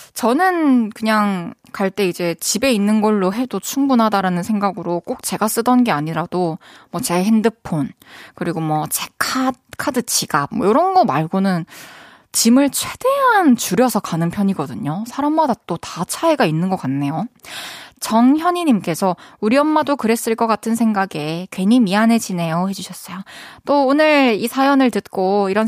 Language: Korean